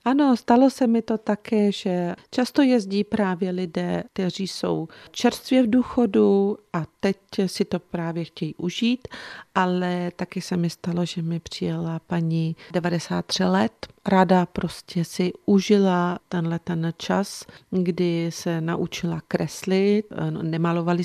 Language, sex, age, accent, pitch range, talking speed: Czech, female, 40-59, native, 160-190 Hz, 135 wpm